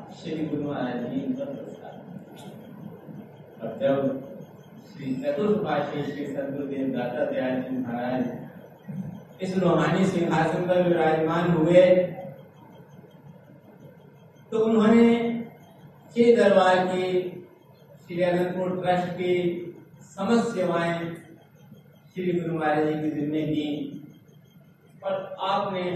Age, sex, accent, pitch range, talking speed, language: 50-69, male, native, 150-185 Hz, 45 wpm, Hindi